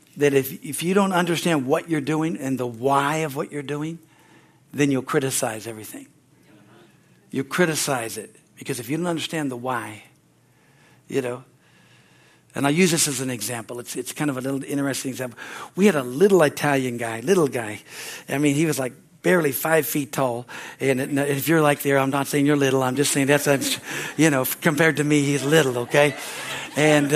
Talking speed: 195 wpm